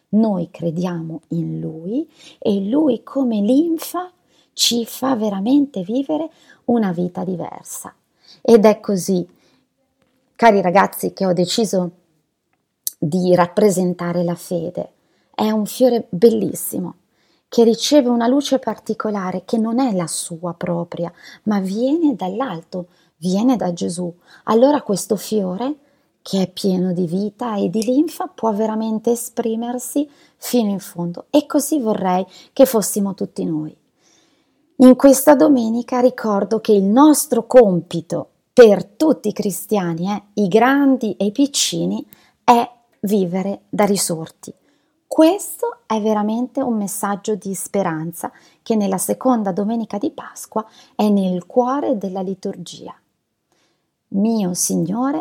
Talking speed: 125 wpm